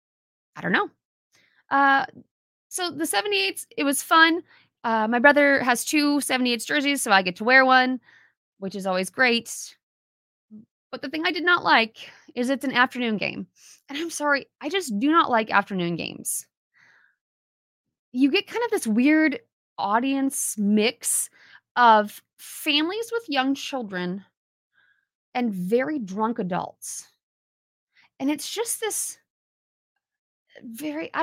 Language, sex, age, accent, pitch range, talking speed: English, female, 20-39, American, 190-300 Hz, 140 wpm